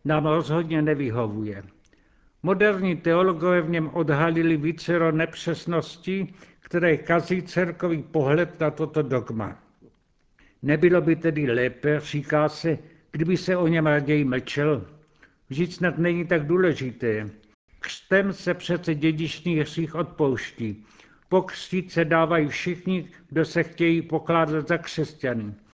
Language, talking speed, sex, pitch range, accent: Czech, 115 wpm, male, 145-170 Hz, native